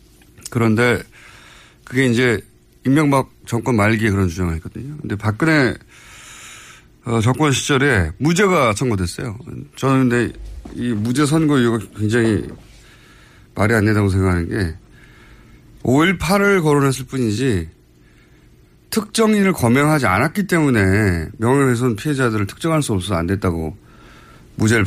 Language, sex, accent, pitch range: Korean, male, native, 105-155 Hz